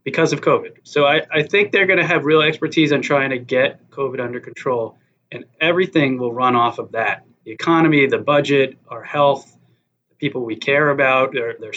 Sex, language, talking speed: male, English, 200 wpm